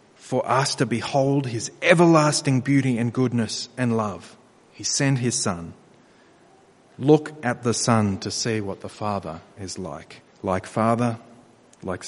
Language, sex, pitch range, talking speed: English, male, 110-135 Hz, 145 wpm